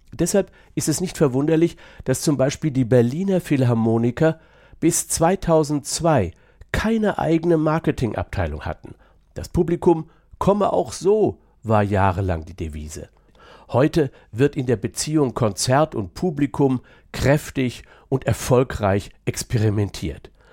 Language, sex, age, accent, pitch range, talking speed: German, male, 50-69, German, 110-155 Hz, 110 wpm